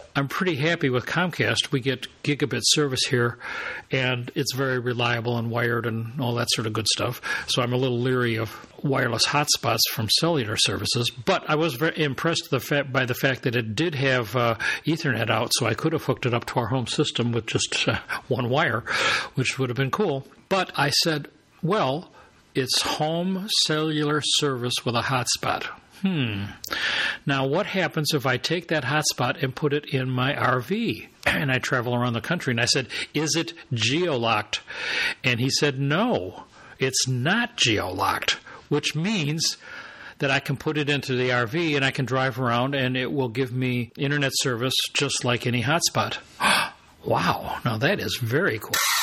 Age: 60-79